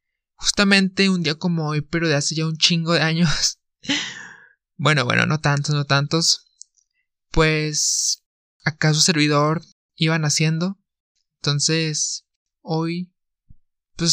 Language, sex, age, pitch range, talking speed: Spanish, male, 20-39, 150-170 Hz, 115 wpm